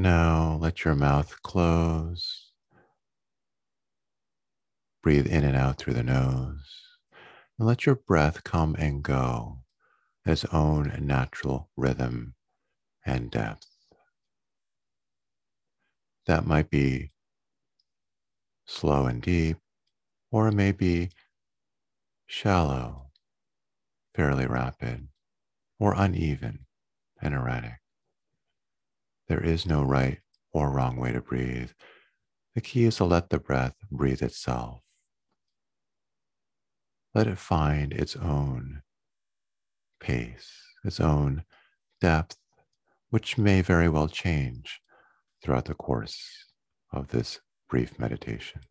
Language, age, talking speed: English, 50-69, 100 wpm